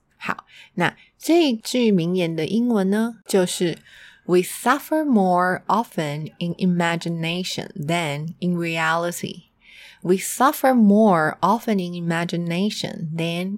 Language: Chinese